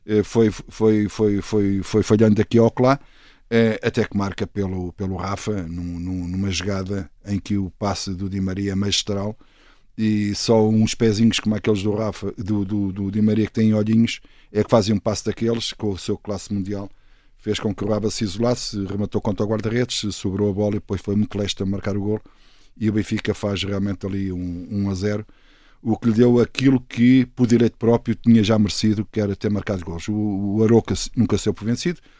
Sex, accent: male, Portuguese